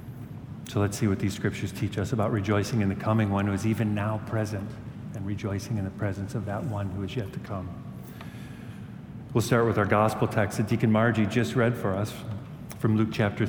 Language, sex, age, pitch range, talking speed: English, male, 50-69, 100-125 Hz, 215 wpm